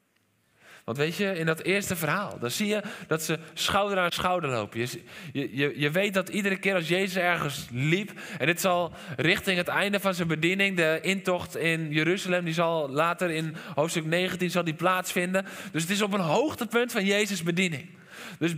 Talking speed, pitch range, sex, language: 180 wpm, 155-205 Hz, male, Dutch